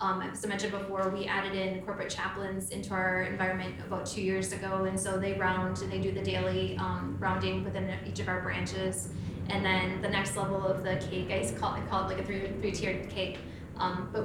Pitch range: 180-195 Hz